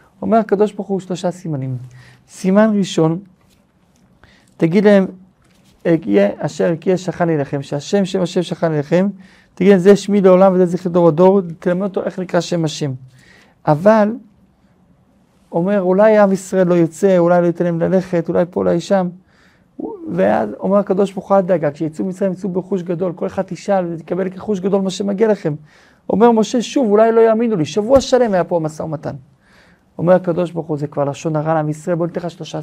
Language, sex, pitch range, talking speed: Hebrew, male, 165-200 Hz, 180 wpm